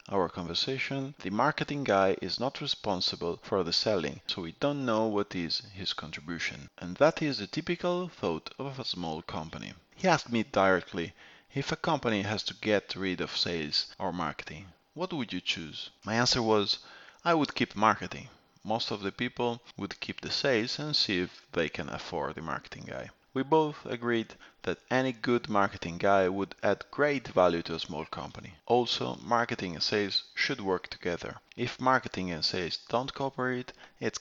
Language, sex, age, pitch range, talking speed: English, male, 30-49, 95-130 Hz, 180 wpm